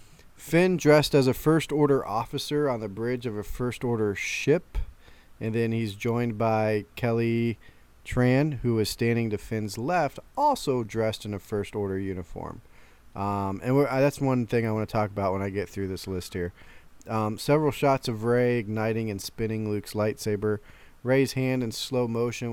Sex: male